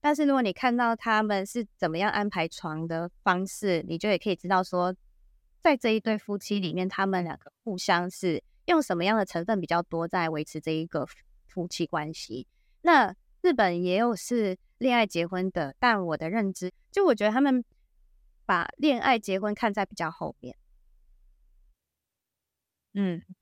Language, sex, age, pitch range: Chinese, female, 20-39, 165-215 Hz